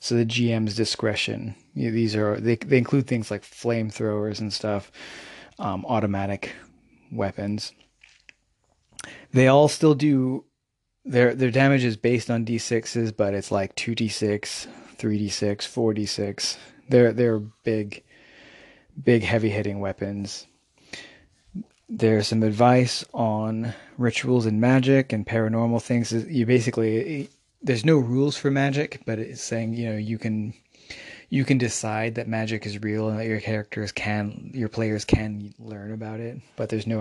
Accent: American